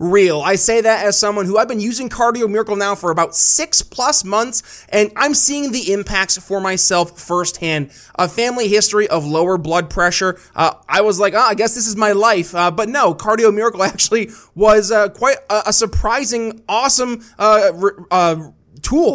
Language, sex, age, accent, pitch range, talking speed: English, male, 20-39, American, 185-225 Hz, 190 wpm